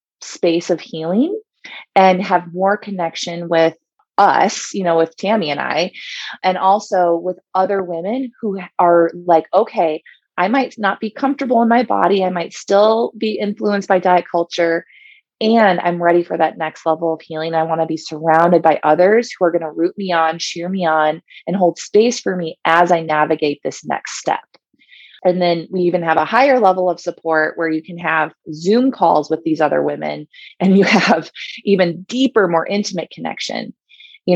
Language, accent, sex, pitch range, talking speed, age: English, American, female, 170-215 Hz, 185 wpm, 20-39